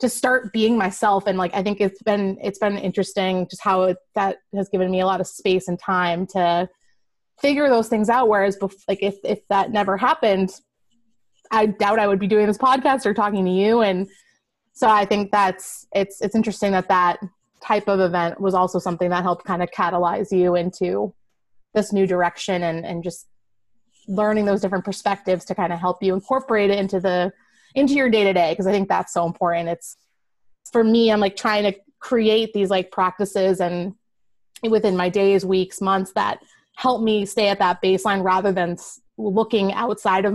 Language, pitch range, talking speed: English, 185-210 Hz, 195 wpm